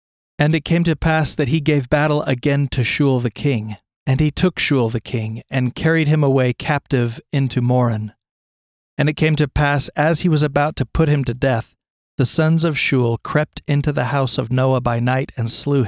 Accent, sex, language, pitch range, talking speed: American, male, English, 120-145 Hz, 210 wpm